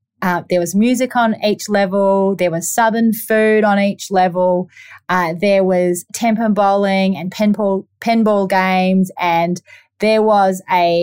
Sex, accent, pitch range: female, Australian, 175-210 Hz